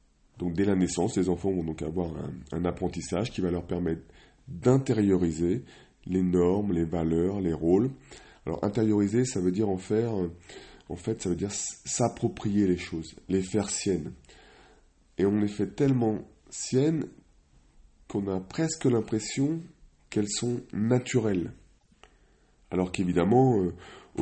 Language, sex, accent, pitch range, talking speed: French, male, French, 80-105 Hz, 140 wpm